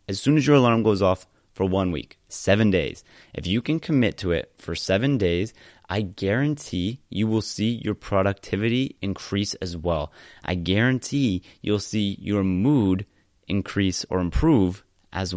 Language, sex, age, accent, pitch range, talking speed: English, male, 30-49, American, 90-110 Hz, 160 wpm